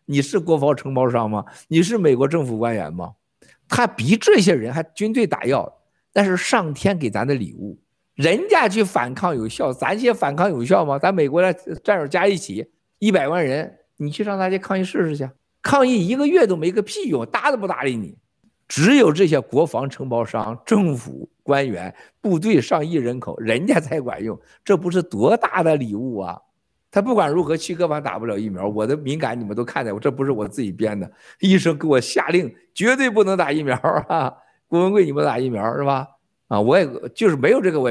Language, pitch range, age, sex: Chinese, 125-190 Hz, 50-69, male